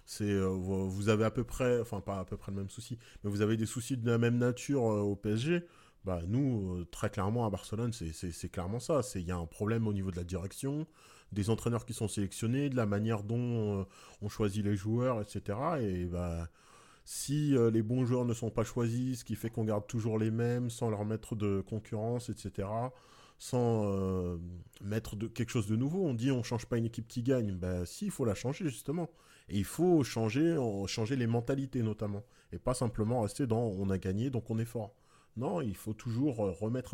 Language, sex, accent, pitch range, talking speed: French, male, French, 100-120 Hz, 230 wpm